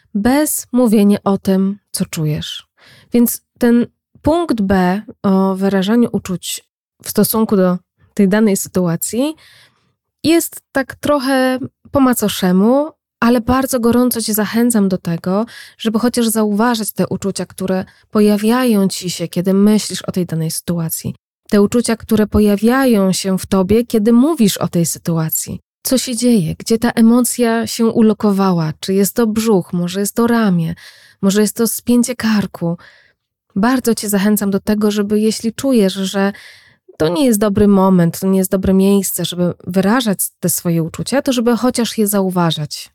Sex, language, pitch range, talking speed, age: female, Polish, 185-235 Hz, 150 wpm, 20-39